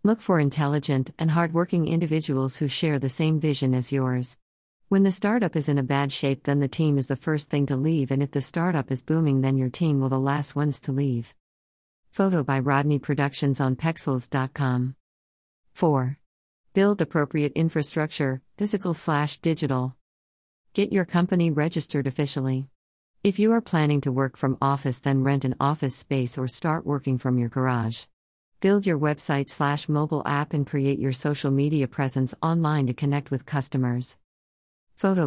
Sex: female